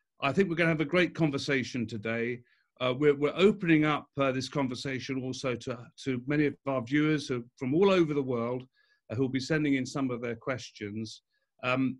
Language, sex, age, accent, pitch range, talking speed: English, male, 50-69, British, 135-180 Hz, 205 wpm